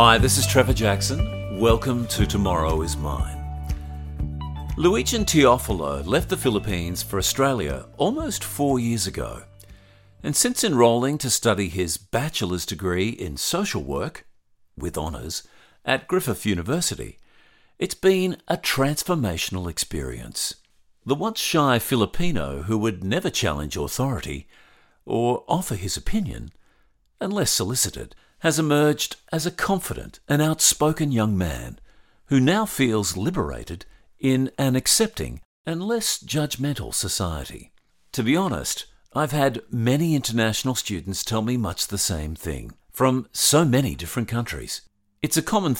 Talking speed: 130 wpm